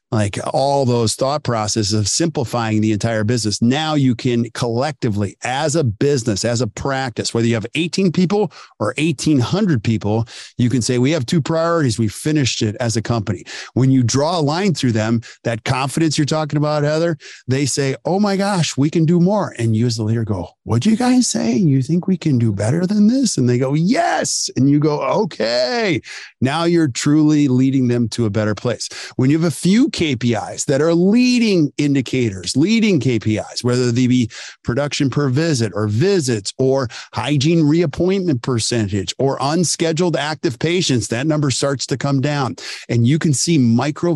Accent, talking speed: American, 190 wpm